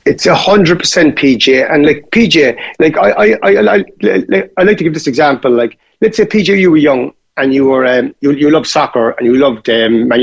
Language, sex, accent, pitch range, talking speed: English, male, British, 150-215 Hz, 210 wpm